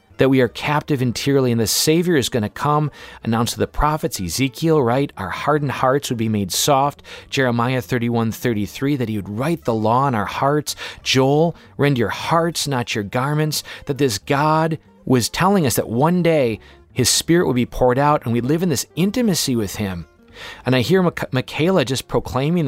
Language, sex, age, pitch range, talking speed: English, male, 40-59, 115-150 Hz, 195 wpm